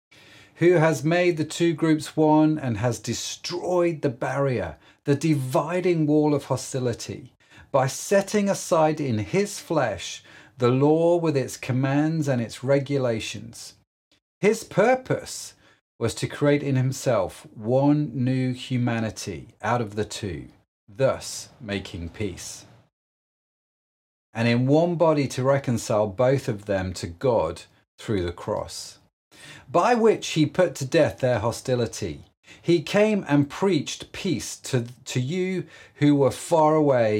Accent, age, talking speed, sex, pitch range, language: British, 40-59, 130 wpm, male, 115-155 Hz, English